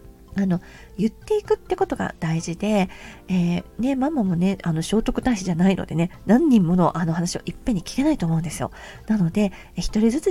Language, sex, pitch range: Japanese, female, 175-225 Hz